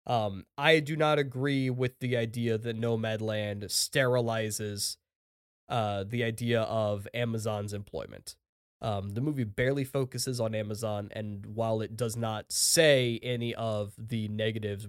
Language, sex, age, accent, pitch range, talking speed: English, male, 20-39, American, 105-140 Hz, 135 wpm